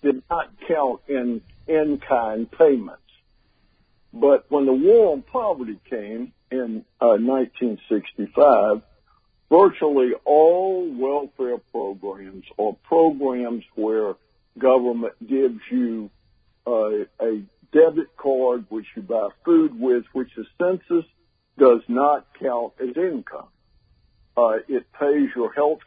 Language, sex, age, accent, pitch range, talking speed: English, male, 60-79, American, 120-165 Hz, 115 wpm